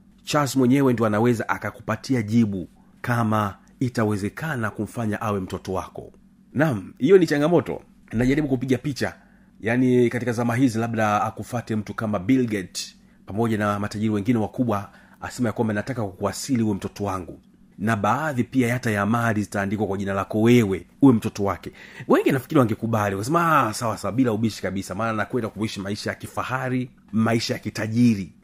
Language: Swahili